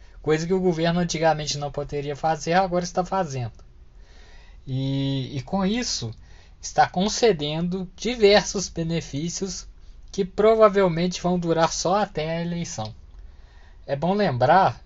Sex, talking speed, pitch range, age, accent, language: male, 120 wpm, 130-190 Hz, 20-39, Brazilian, Portuguese